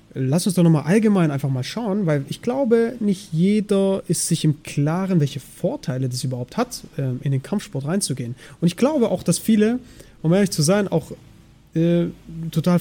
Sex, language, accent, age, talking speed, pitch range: male, German, German, 30-49, 185 wpm, 150-200 Hz